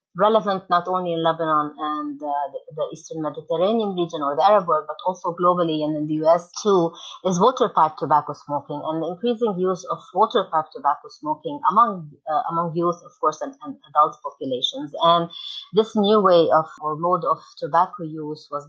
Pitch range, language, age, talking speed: 155-200 Hz, English, 30-49, 190 wpm